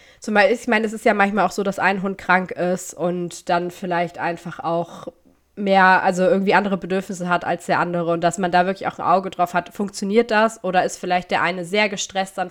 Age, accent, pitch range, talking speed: 20-39, German, 165-185 Hz, 225 wpm